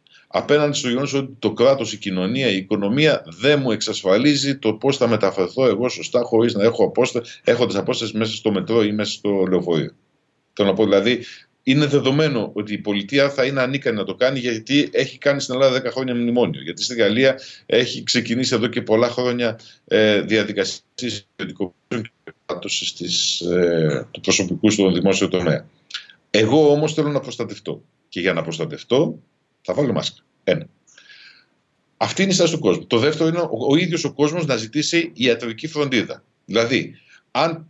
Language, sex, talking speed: Greek, male, 165 wpm